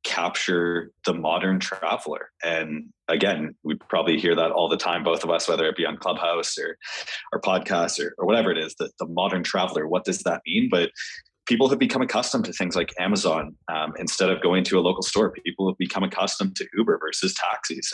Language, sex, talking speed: English, male, 205 wpm